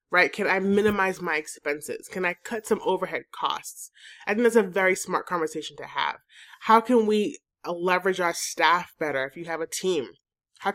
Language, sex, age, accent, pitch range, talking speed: English, male, 20-39, American, 170-220 Hz, 190 wpm